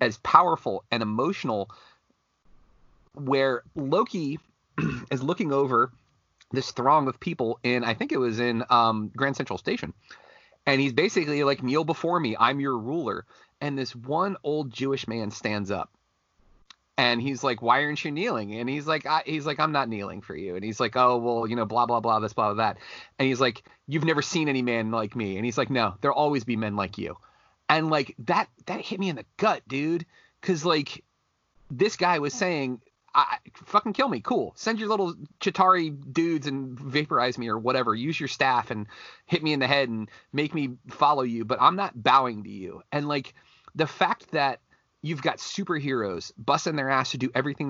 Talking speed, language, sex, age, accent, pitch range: 200 wpm, English, male, 30-49, American, 120-155 Hz